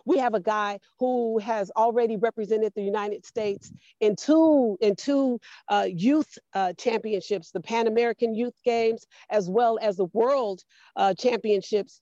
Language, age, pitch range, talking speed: English, 40-59, 195-235 Hz, 155 wpm